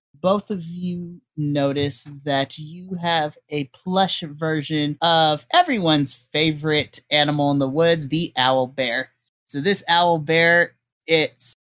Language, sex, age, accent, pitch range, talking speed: English, male, 20-39, American, 145-190 Hz, 130 wpm